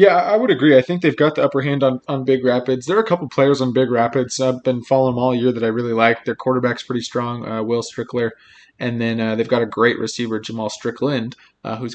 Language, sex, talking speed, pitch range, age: English, male, 260 wpm, 115-135 Hz, 20-39